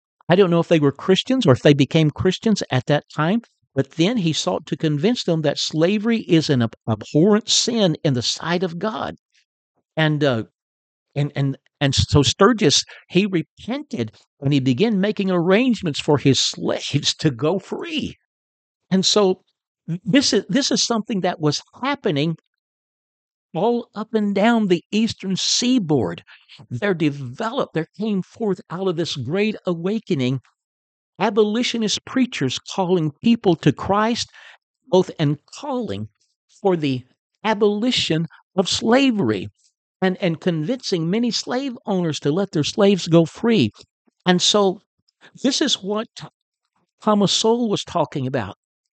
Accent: American